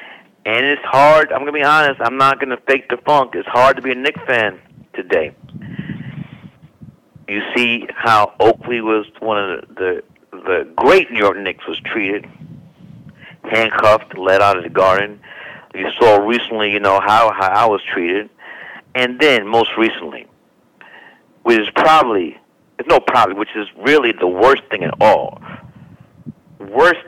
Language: English